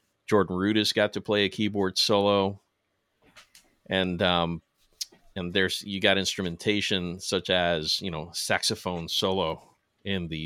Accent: American